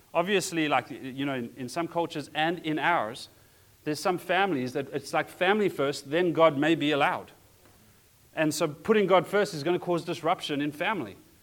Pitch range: 125-170 Hz